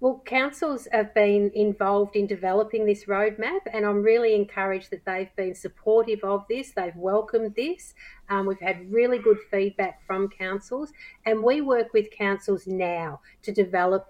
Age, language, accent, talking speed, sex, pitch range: 40-59, English, Australian, 160 wpm, female, 190-220 Hz